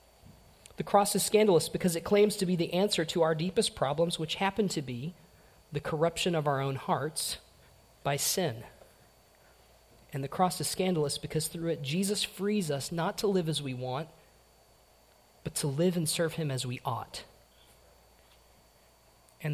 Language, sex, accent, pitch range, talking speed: English, male, American, 135-180 Hz, 165 wpm